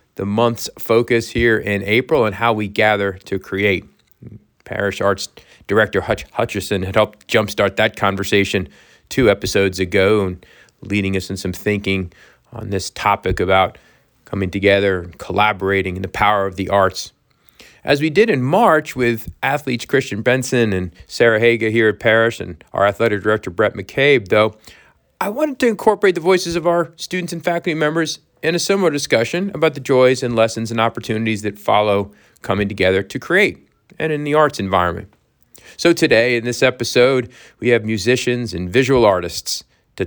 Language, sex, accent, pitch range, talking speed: English, male, American, 100-125 Hz, 170 wpm